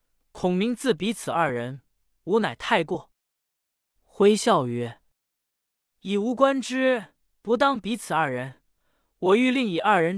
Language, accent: Chinese, native